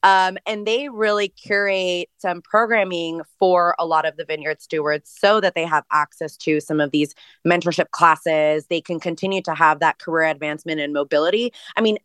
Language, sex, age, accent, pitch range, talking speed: English, female, 20-39, American, 155-195 Hz, 185 wpm